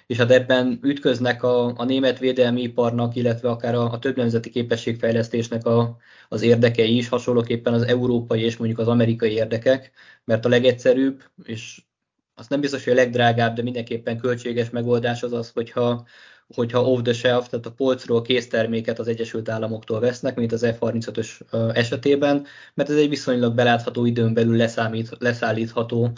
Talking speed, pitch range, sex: 155 wpm, 115-125 Hz, male